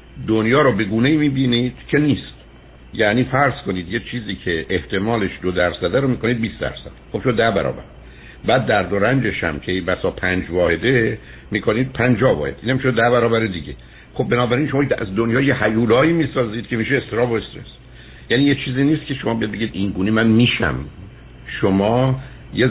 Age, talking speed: 60-79, 175 wpm